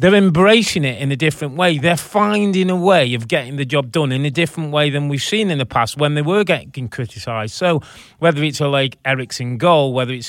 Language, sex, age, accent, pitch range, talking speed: English, male, 30-49, British, 130-170 Hz, 235 wpm